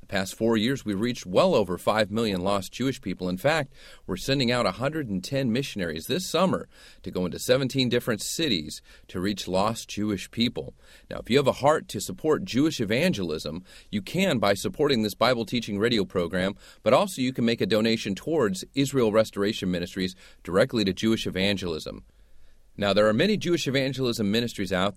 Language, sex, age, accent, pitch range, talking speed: English, male, 40-59, American, 95-135 Hz, 180 wpm